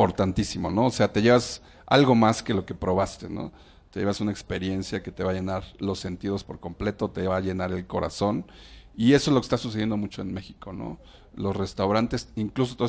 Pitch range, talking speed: 95-105 Hz, 220 wpm